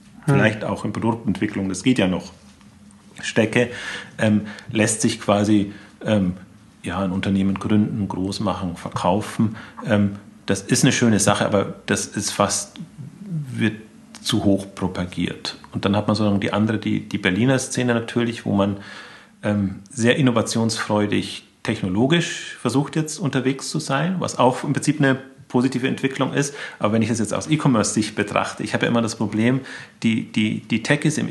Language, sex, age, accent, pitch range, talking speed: German, male, 40-59, German, 105-125 Hz, 160 wpm